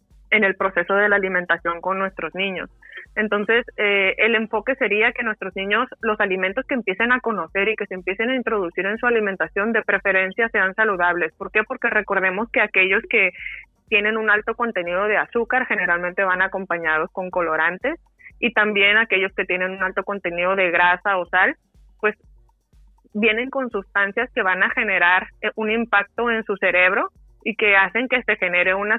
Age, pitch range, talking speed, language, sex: 20-39, 185-220 Hz, 180 wpm, Spanish, female